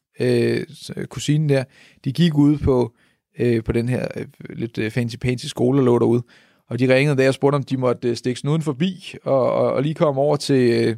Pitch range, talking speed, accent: 120-150 Hz, 180 wpm, native